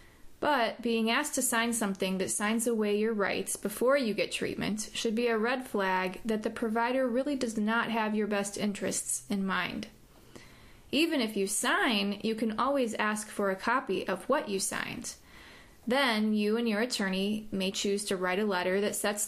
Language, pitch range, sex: English, 195-235 Hz, female